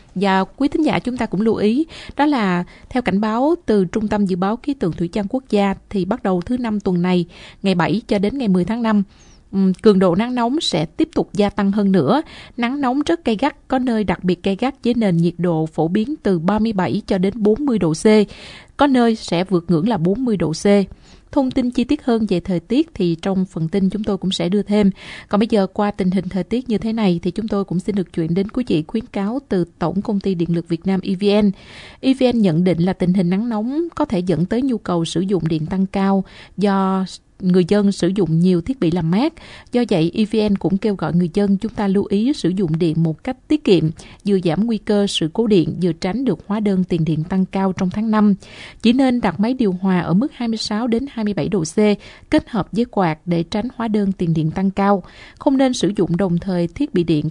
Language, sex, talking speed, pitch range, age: Vietnamese, female, 245 wpm, 180-230 Hz, 20-39